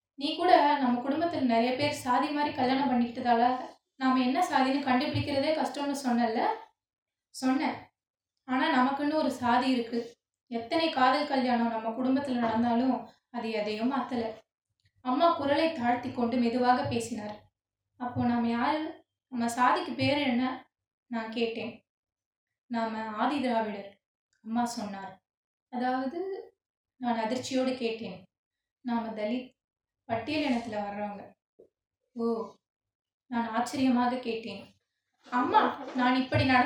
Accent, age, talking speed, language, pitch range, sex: native, 20-39, 100 wpm, Tamil, 235-310 Hz, female